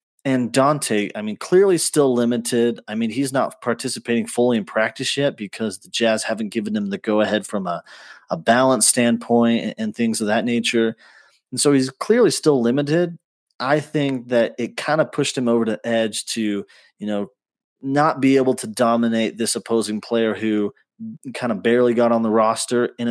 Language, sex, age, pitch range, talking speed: English, male, 30-49, 110-130 Hz, 190 wpm